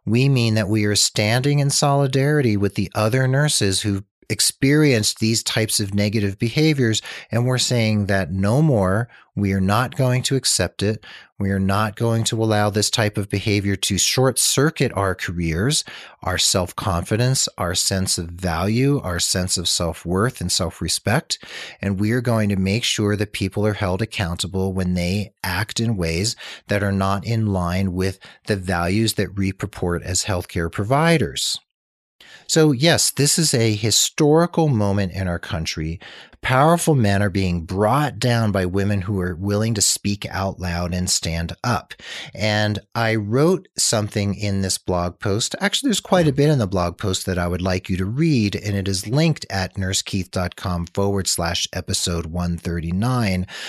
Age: 40-59